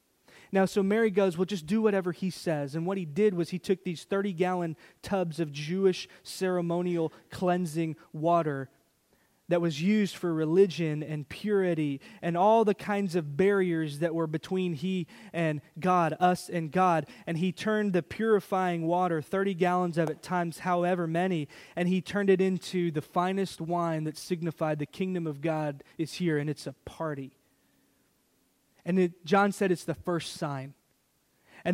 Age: 20-39